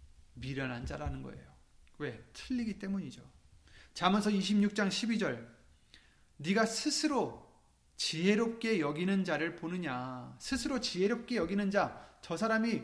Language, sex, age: Korean, male, 30-49